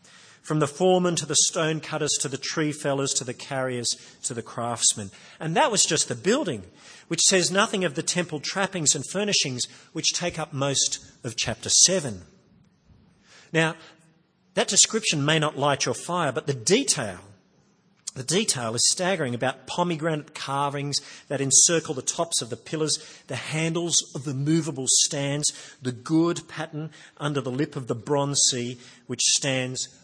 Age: 40-59